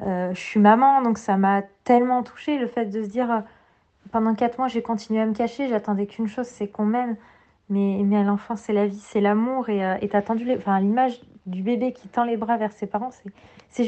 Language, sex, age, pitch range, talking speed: French, female, 20-39, 205-240 Hz, 255 wpm